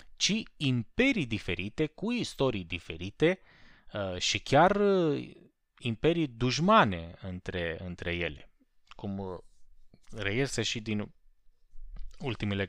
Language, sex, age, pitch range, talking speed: Romanian, male, 30-49, 90-135 Hz, 85 wpm